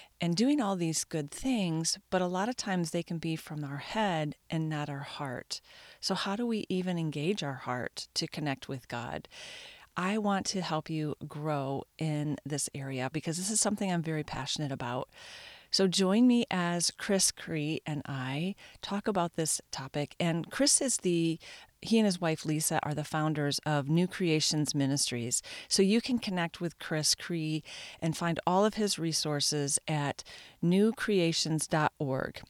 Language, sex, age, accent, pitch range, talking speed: English, female, 40-59, American, 145-180 Hz, 170 wpm